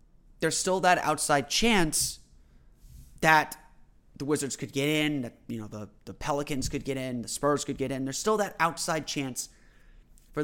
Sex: male